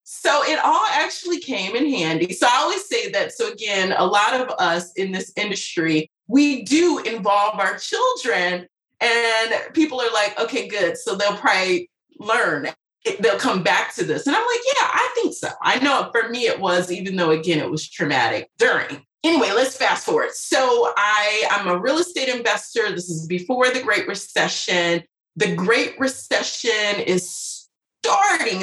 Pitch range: 175-265 Hz